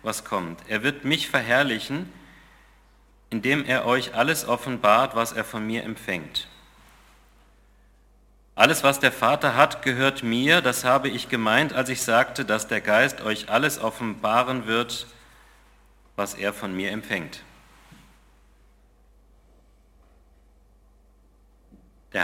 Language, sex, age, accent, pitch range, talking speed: German, male, 40-59, German, 95-130 Hz, 115 wpm